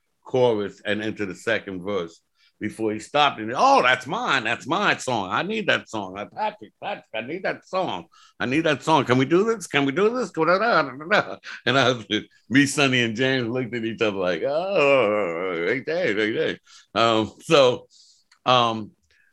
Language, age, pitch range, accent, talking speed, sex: English, 60-79, 85-110 Hz, American, 175 wpm, male